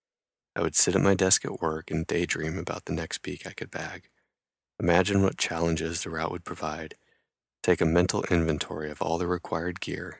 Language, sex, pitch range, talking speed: English, male, 80-90 Hz, 195 wpm